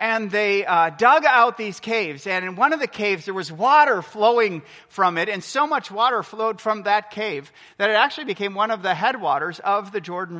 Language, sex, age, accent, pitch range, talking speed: English, male, 40-59, American, 160-215 Hz, 220 wpm